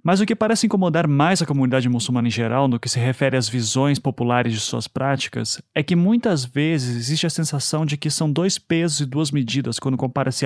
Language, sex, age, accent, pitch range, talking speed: Portuguese, male, 30-49, Brazilian, 125-160 Hz, 220 wpm